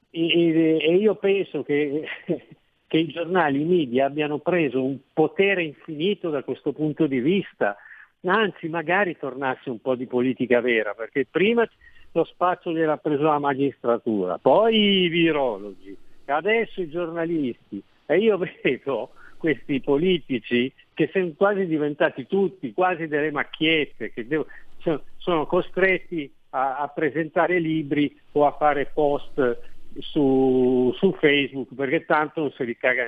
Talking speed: 130 wpm